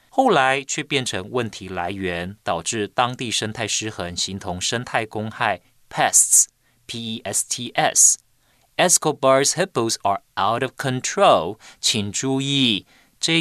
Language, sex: Chinese, male